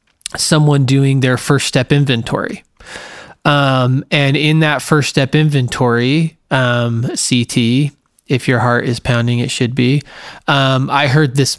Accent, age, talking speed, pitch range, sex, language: American, 20-39, 140 wpm, 125-140 Hz, male, English